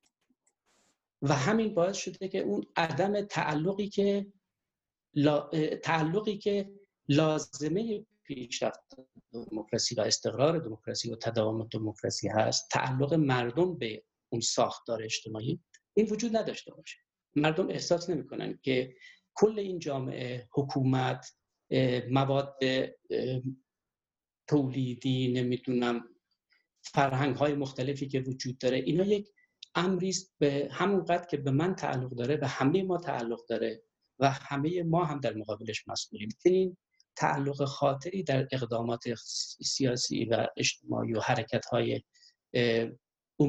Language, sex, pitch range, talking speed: Persian, male, 125-180 Hz, 110 wpm